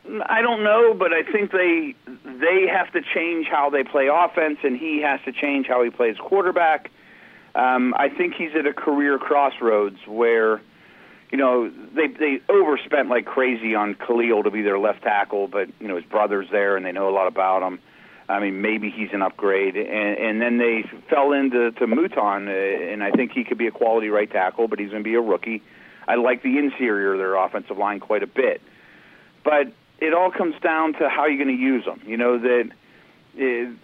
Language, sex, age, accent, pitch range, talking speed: English, male, 50-69, American, 105-140 Hz, 210 wpm